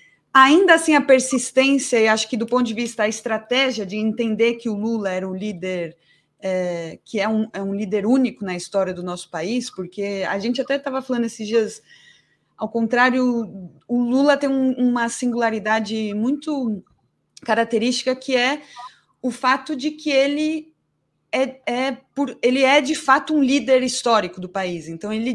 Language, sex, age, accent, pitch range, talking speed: Portuguese, female, 20-39, Brazilian, 200-255 Hz, 175 wpm